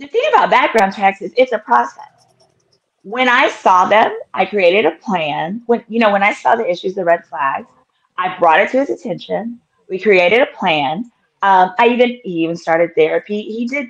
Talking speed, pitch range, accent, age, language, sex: 205 wpm, 190-245 Hz, American, 30-49, English, female